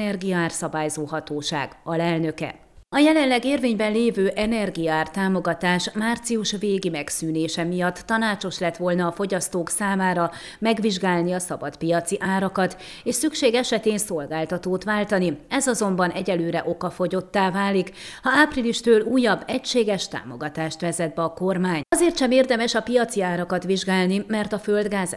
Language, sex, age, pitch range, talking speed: Hungarian, female, 30-49, 170-215 Hz, 130 wpm